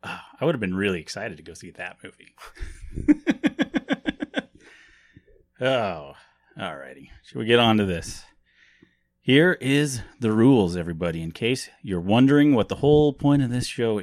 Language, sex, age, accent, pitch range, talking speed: English, male, 30-49, American, 95-130 Hz, 155 wpm